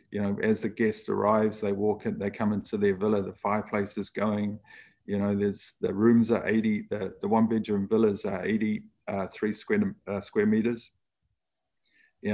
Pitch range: 105-120 Hz